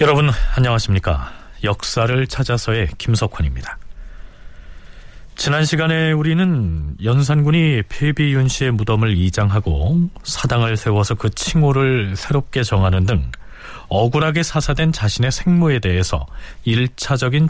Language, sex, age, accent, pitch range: Korean, male, 40-59, native, 100-150 Hz